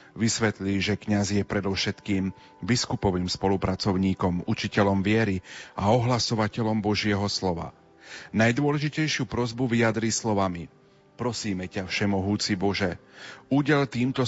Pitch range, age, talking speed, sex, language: 100-115 Hz, 40-59, 95 wpm, male, Slovak